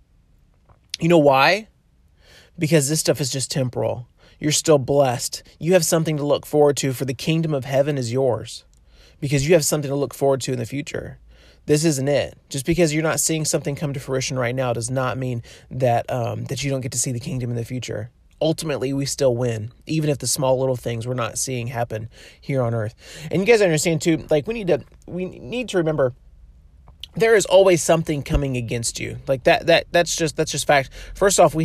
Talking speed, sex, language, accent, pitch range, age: 220 wpm, male, English, American, 125-160 Hz, 30-49